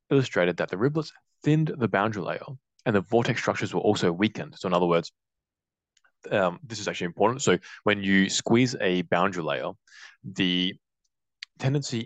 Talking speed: 165 wpm